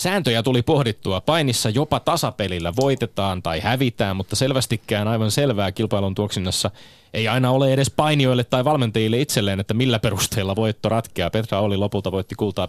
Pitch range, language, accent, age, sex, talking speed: 100-125 Hz, Finnish, native, 30-49, male, 155 wpm